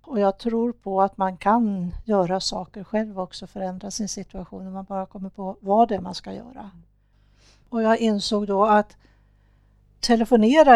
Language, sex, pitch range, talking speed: Swedish, female, 195-230 Hz, 175 wpm